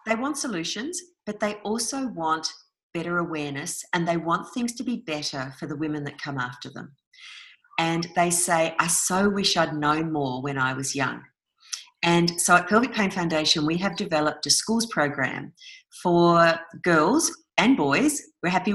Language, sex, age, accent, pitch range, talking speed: English, female, 40-59, Australian, 155-215 Hz, 175 wpm